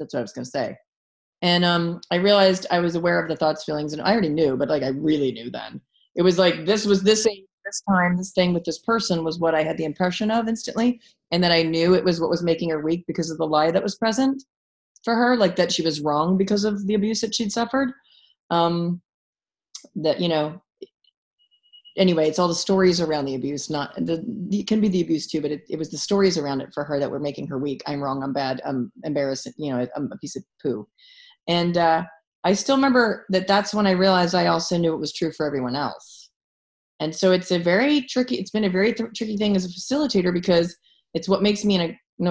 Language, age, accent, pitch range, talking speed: English, 30-49, American, 160-205 Hz, 245 wpm